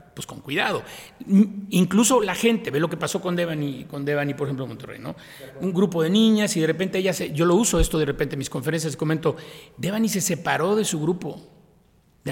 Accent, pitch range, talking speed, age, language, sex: Mexican, 135-175 Hz, 220 wpm, 40-59, Spanish, male